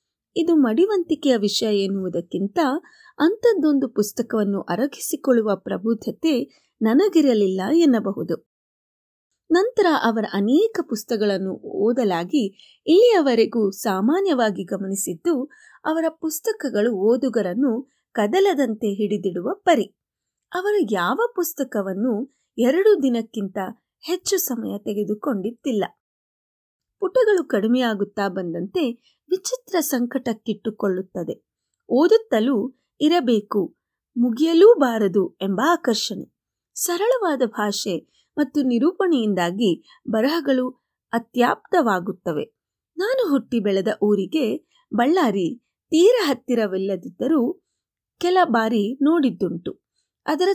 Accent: native